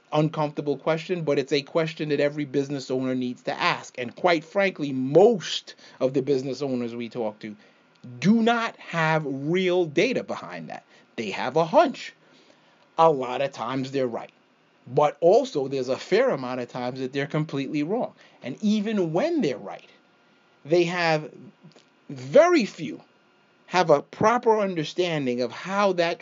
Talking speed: 160 wpm